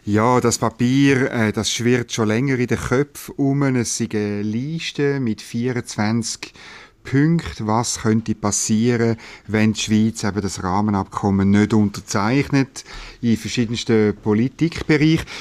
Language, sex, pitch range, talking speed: German, male, 105-125 Hz, 125 wpm